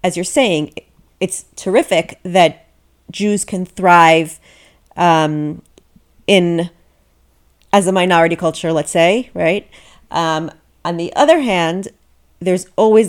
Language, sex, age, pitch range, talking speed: English, female, 30-49, 165-205 Hz, 115 wpm